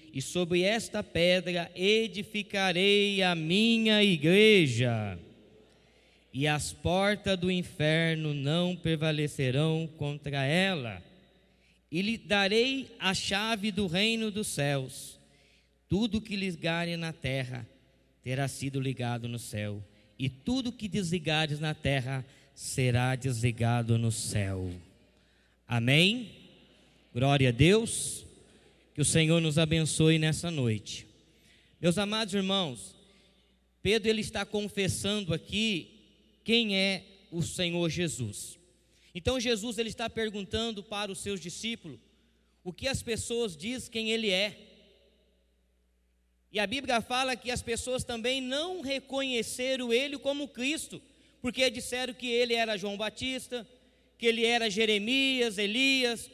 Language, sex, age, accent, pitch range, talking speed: Portuguese, male, 20-39, Brazilian, 140-225 Hz, 120 wpm